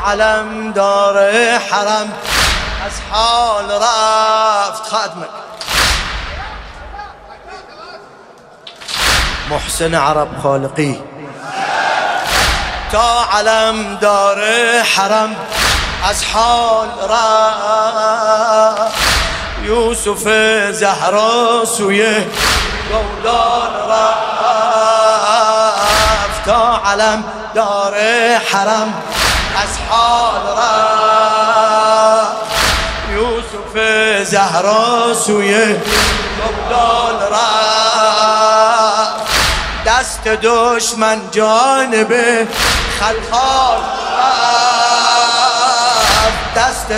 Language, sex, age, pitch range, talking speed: Persian, male, 30-49, 215-235 Hz, 50 wpm